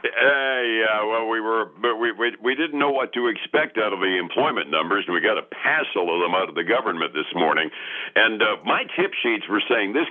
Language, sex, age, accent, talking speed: English, male, 60-79, American, 235 wpm